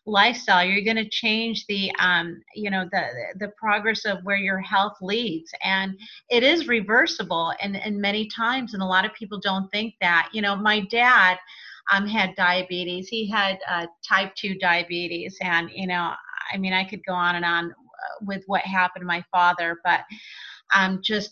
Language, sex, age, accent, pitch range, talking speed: English, female, 30-49, American, 180-210 Hz, 185 wpm